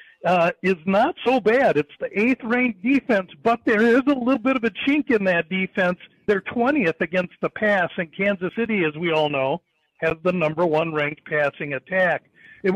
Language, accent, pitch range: English, American, 170-215 Hz